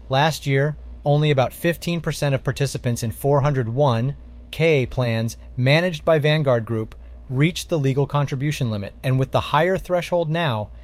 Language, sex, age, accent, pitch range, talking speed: English, male, 30-49, American, 115-155 Hz, 140 wpm